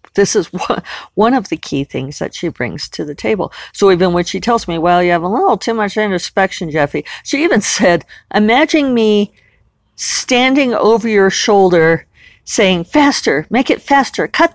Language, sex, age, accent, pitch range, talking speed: English, female, 50-69, American, 155-225 Hz, 175 wpm